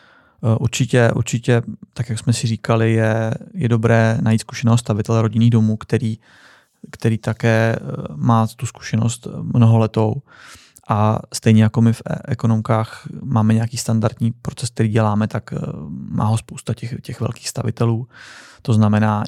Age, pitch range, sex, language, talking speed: 20-39, 110-120 Hz, male, Czech, 140 wpm